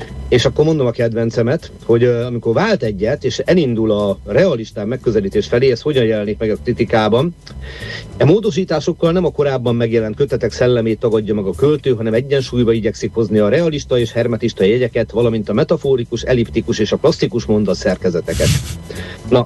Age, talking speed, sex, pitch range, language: 50-69, 155 wpm, male, 105-130 Hz, Hungarian